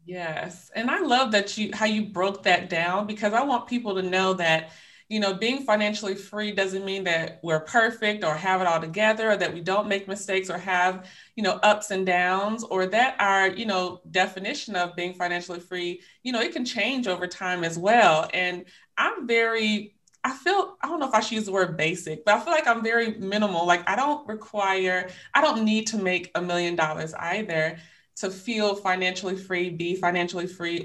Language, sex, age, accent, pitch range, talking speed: English, female, 30-49, American, 180-225 Hz, 210 wpm